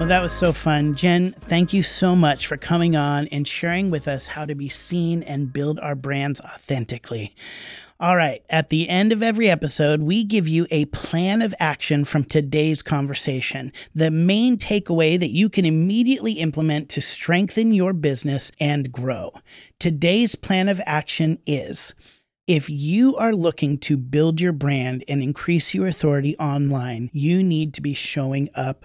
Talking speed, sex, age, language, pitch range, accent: 170 wpm, male, 30-49, English, 140-180 Hz, American